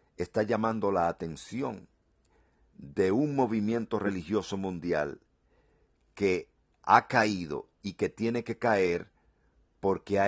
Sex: male